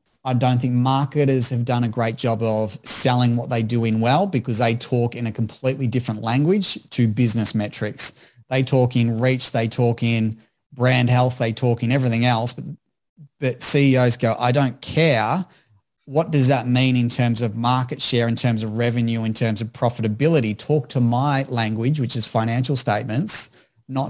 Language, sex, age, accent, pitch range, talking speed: English, male, 30-49, Australian, 115-140 Hz, 185 wpm